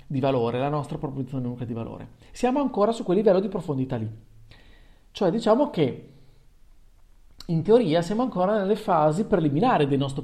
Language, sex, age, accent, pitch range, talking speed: Italian, male, 40-59, native, 130-195 Hz, 160 wpm